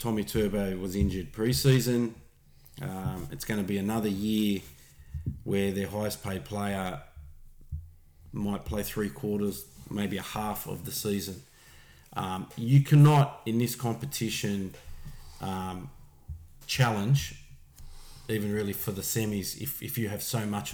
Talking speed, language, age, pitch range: 130 wpm, English, 30-49, 85-130 Hz